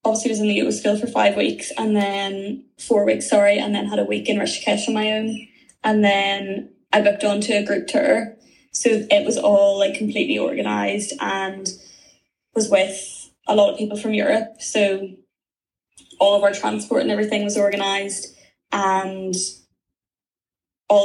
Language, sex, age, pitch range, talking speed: English, female, 10-29, 190-220 Hz, 175 wpm